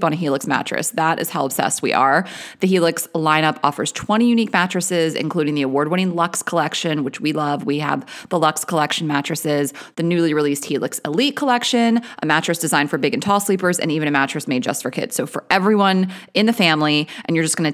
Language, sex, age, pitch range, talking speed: English, female, 30-49, 155-200 Hz, 215 wpm